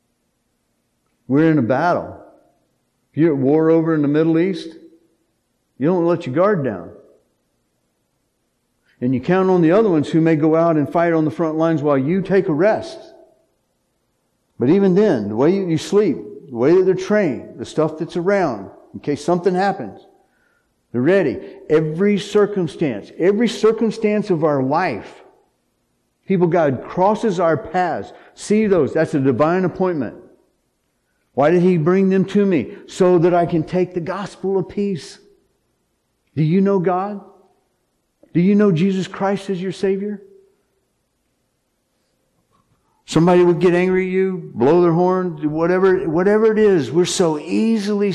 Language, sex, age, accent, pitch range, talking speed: English, male, 50-69, American, 155-195 Hz, 155 wpm